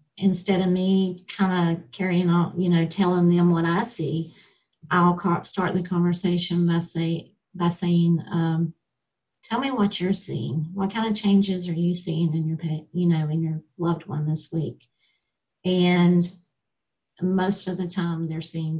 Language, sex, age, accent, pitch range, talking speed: English, female, 50-69, American, 165-185 Hz, 165 wpm